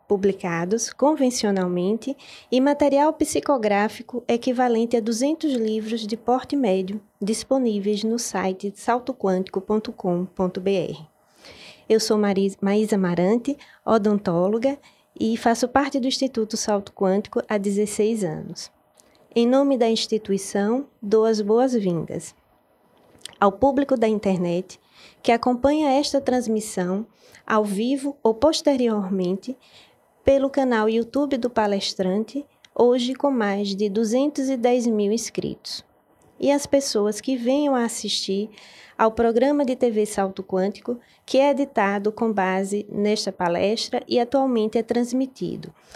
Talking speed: 110 wpm